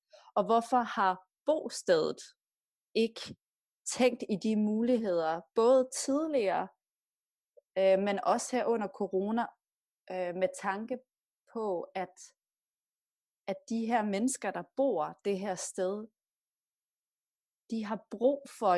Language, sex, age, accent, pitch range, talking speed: Danish, female, 30-49, native, 180-235 Hz, 110 wpm